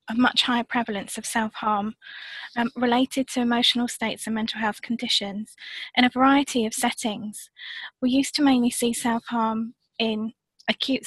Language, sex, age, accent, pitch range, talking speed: English, female, 20-39, British, 220-250 Hz, 145 wpm